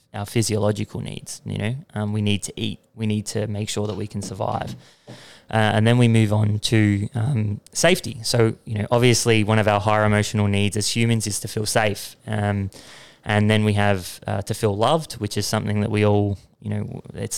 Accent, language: Australian, English